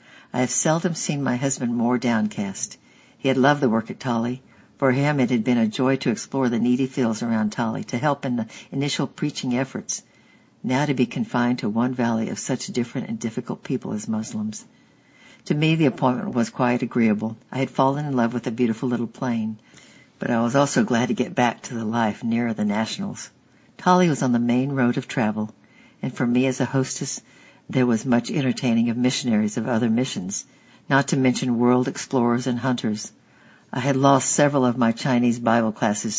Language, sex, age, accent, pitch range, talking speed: English, female, 60-79, American, 115-140 Hz, 200 wpm